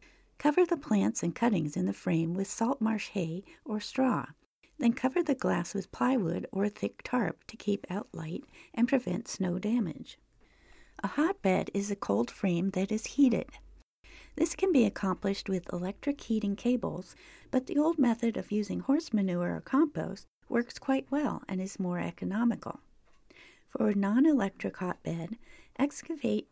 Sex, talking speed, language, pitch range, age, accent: female, 160 wpm, English, 190-265 Hz, 50-69, American